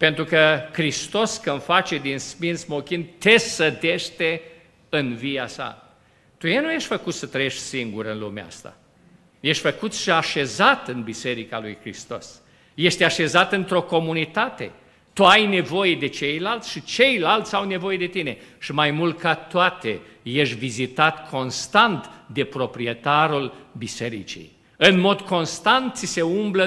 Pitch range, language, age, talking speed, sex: 140-195 Hz, Romanian, 50-69, 140 wpm, male